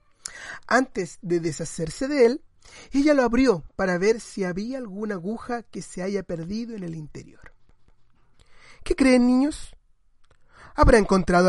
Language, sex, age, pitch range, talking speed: Spanish, male, 30-49, 185-250 Hz, 135 wpm